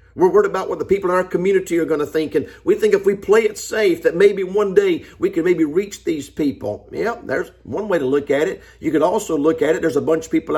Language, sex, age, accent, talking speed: English, male, 50-69, American, 285 wpm